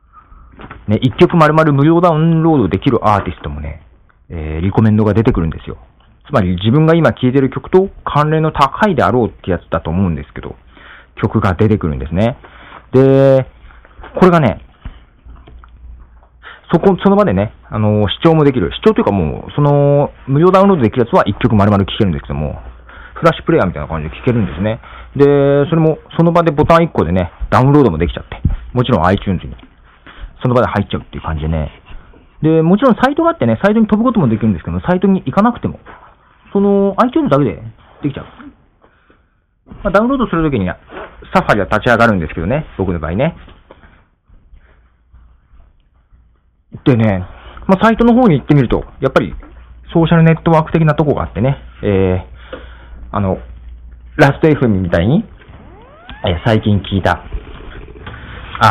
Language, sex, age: Japanese, male, 40-59